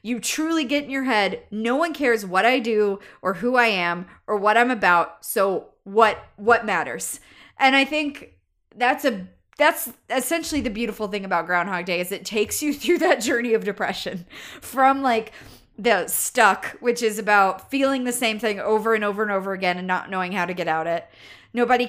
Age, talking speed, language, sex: 20-39, 200 wpm, English, female